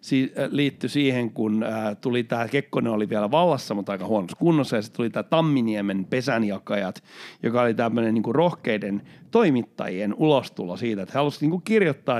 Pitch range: 115-165 Hz